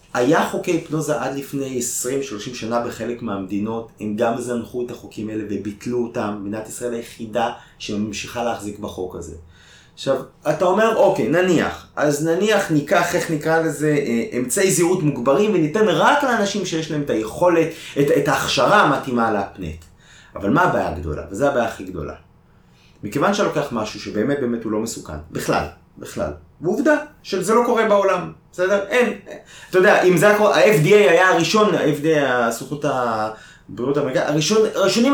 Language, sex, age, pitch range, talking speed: Hebrew, male, 30-49, 105-165 Hz, 150 wpm